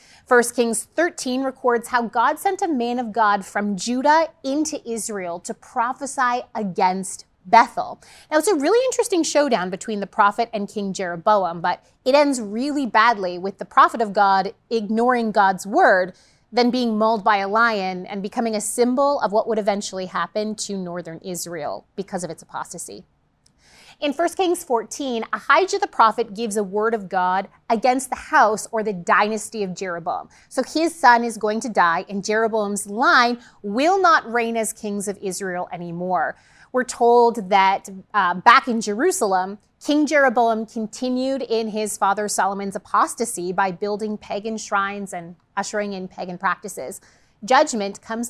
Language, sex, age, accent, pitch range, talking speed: English, female, 30-49, American, 195-245 Hz, 160 wpm